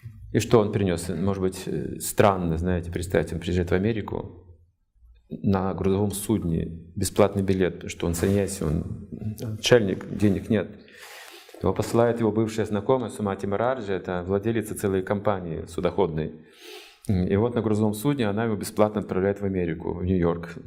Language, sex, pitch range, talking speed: Russian, male, 95-140 Hz, 145 wpm